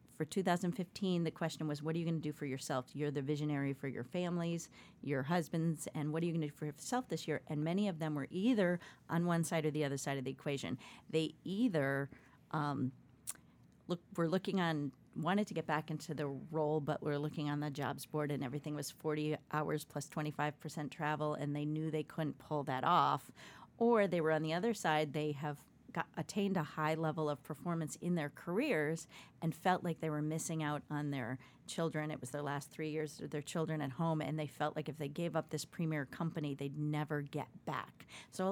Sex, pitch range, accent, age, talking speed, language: female, 145-165 Hz, American, 40-59, 220 wpm, English